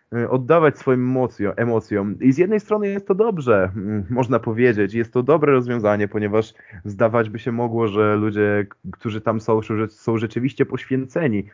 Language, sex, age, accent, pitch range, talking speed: Polish, male, 20-39, native, 115-155 Hz, 150 wpm